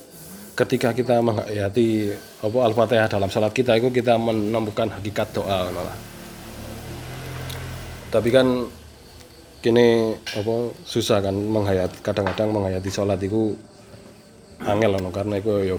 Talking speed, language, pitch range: 105 wpm, Indonesian, 95-115 Hz